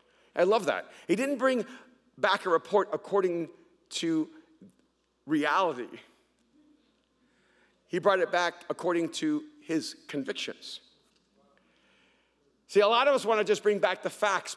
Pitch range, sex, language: 185-260 Hz, male, English